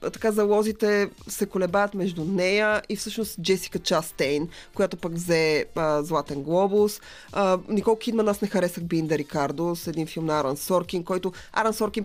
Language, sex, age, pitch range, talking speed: Bulgarian, female, 20-39, 170-215 Hz, 165 wpm